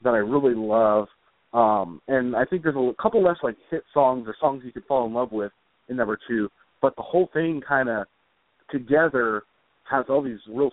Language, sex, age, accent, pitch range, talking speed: English, male, 30-49, American, 110-140 Hz, 205 wpm